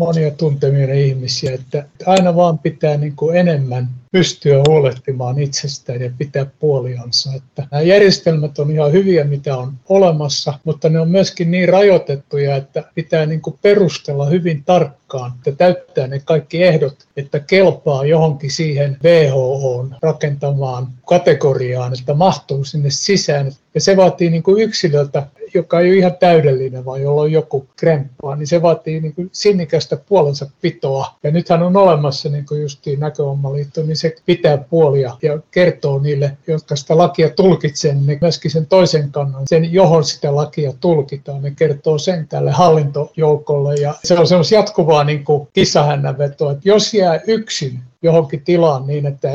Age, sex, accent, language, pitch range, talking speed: 60-79, male, native, Finnish, 140-170 Hz, 155 wpm